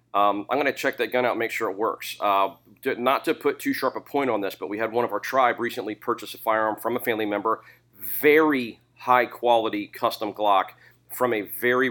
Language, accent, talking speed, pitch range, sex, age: English, American, 230 wpm, 105-125 Hz, male, 40-59